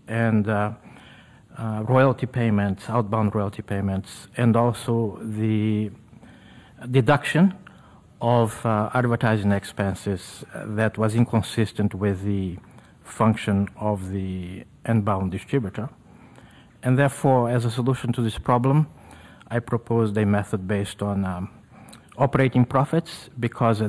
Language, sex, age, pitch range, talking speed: English, male, 50-69, 105-130 Hz, 110 wpm